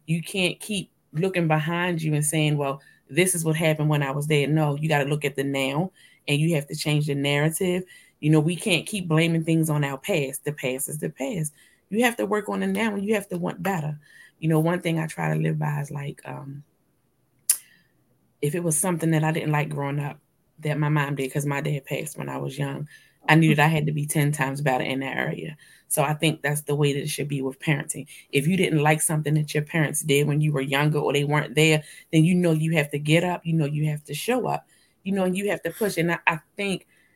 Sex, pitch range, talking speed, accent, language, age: female, 145-165 Hz, 260 wpm, American, English, 20-39